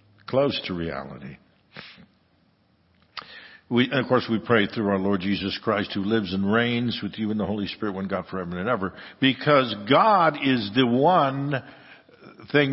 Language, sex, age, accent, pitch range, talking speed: English, male, 60-79, American, 105-135 Hz, 165 wpm